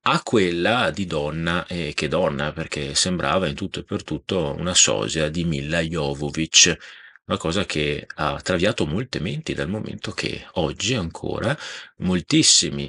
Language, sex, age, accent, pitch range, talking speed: Italian, male, 40-59, native, 75-90 Hz, 155 wpm